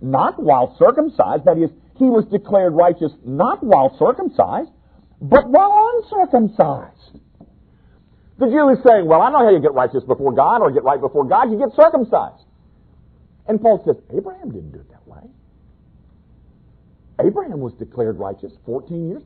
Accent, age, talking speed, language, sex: American, 50-69, 160 wpm, English, male